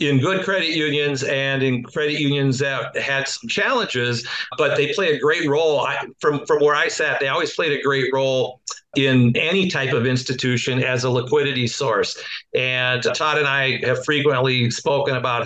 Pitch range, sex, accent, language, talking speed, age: 125-150 Hz, male, American, English, 180 wpm, 50-69